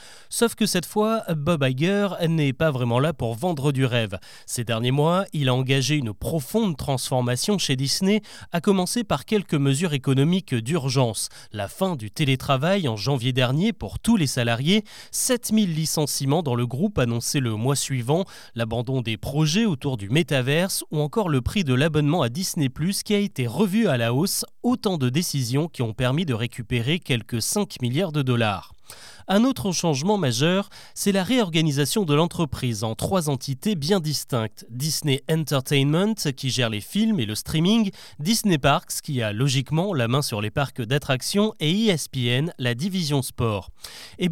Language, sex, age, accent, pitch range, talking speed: French, male, 30-49, French, 130-185 Hz, 170 wpm